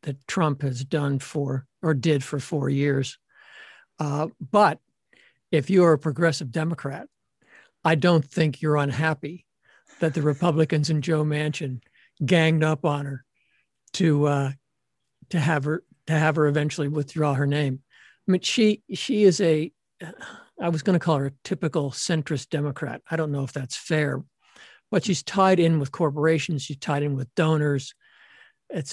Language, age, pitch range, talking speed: English, 60-79, 145-170 Hz, 160 wpm